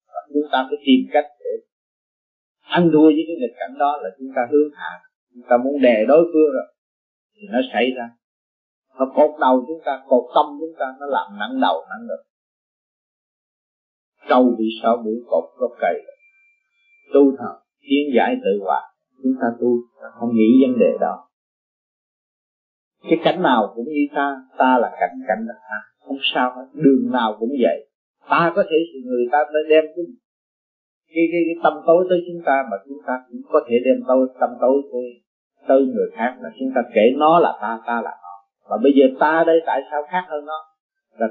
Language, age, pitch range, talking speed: Vietnamese, 30-49, 130-185 Hz, 195 wpm